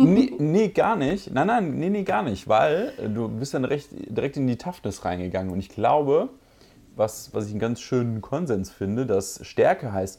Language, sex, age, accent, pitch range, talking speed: German, male, 30-49, German, 95-130 Hz, 200 wpm